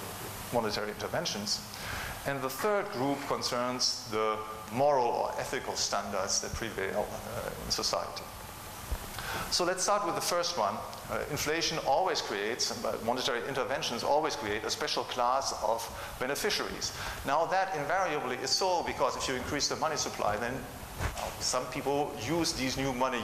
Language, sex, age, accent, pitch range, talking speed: English, male, 50-69, German, 110-140 Hz, 145 wpm